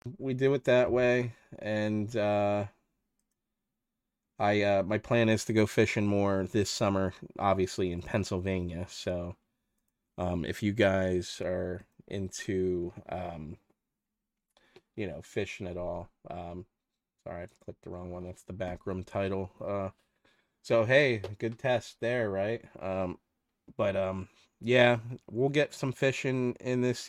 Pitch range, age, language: 95-115 Hz, 20-39, English